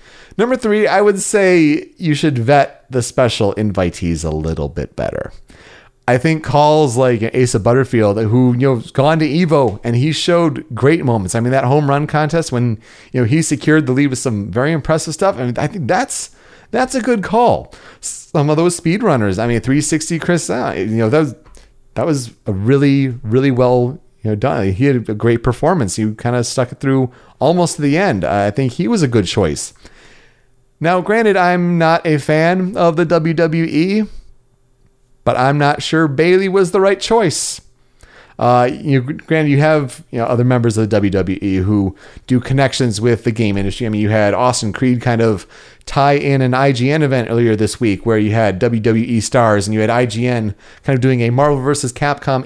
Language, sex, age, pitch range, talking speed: English, male, 30-49, 115-160 Hz, 195 wpm